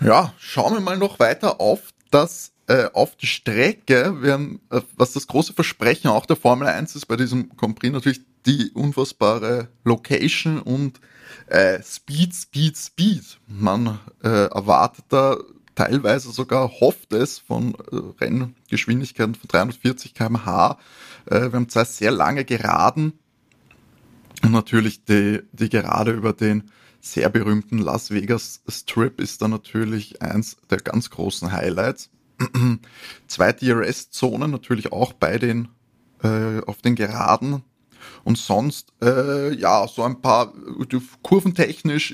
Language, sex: German, male